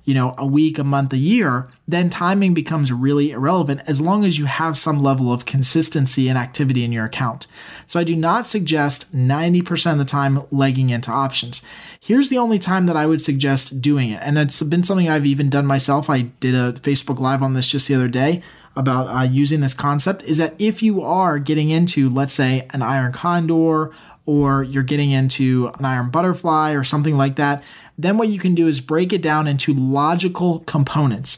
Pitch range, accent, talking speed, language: 135-170 Hz, American, 210 wpm, English